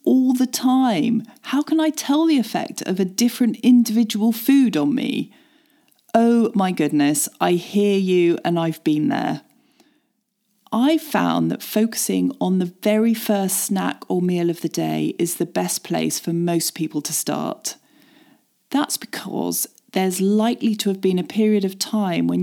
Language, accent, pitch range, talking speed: English, British, 180-235 Hz, 165 wpm